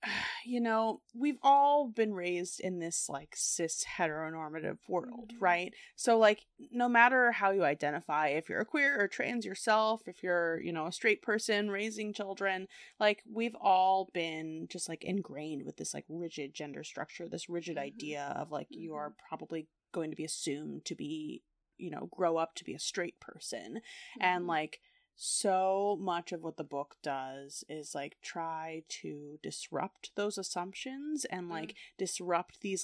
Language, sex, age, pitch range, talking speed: English, female, 20-39, 165-220 Hz, 170 wpm